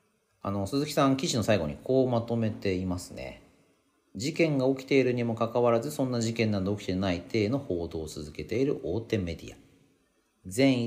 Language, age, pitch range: Japanese, 40-59, 90-135 Hz